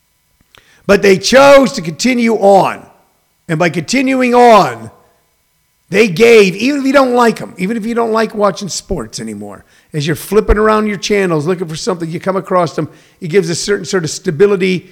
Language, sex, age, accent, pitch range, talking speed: English, male, 50-69, American, 170-220 Hz, 185 wpm